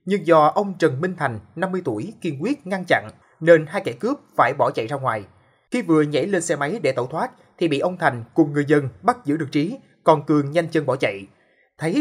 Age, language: 20-39, Vietnamese